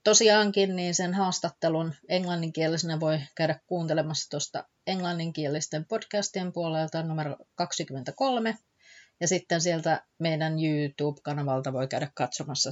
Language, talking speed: Finnish, 105 wpm